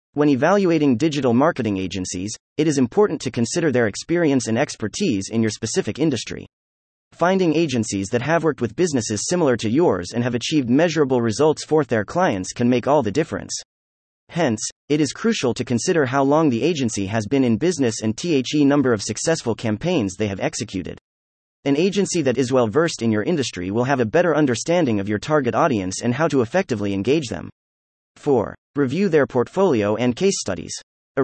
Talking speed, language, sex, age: 185 wpm, English, male, 30-49